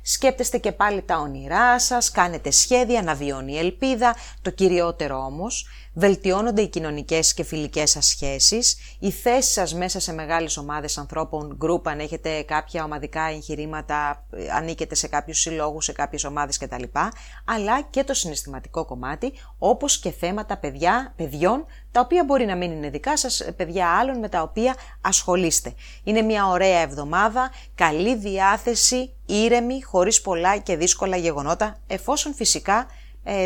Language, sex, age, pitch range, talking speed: English, female, 30-49, 160-240 Hz, 145 wpm